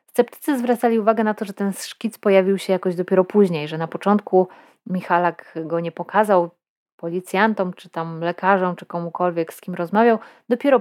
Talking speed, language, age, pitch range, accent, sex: 165 wpm, Polish, 30-49, 180-225 Hz, native, female